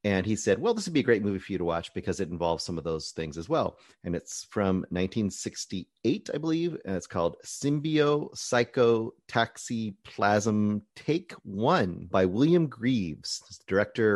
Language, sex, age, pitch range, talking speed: English, male, 30-49, 95-125 Hz, 165 wpm